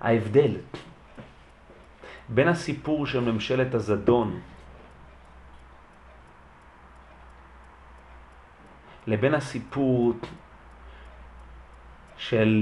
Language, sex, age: Hebrew, male, 40-59